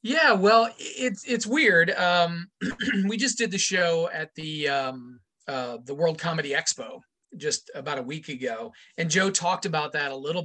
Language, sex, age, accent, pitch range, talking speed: English, male, 30-49, American, 150-200 Hz, 180 wpm